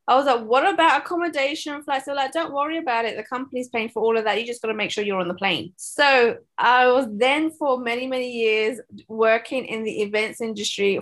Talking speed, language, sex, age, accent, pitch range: 240 wpm, English, female, 20-39, British, 225-295 Hz